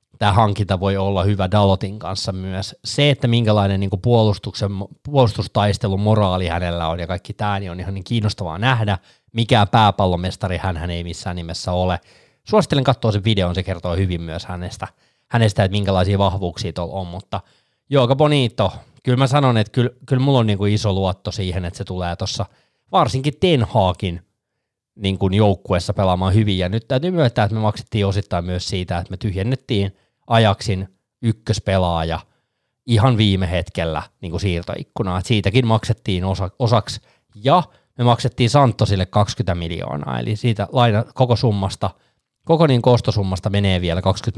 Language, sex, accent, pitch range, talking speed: Finnish, male, native, 95-120 Hz, 150 wpm